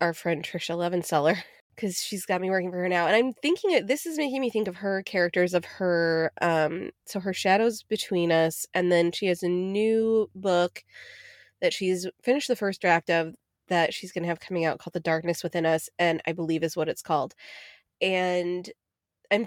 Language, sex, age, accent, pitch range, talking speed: English, female, 20-39, American, 170-210 Hz, 205 wpm